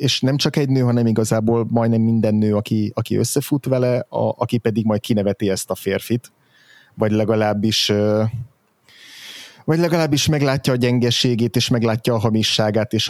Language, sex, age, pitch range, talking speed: Hungarian, male, 30-49, 110-125 Hz, 155 wpm